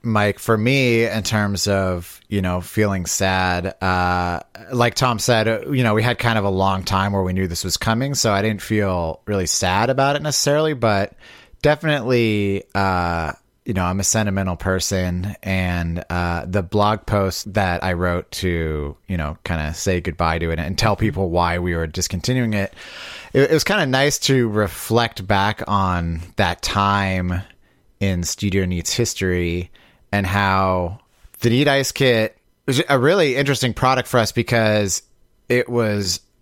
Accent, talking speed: American, 170 wpm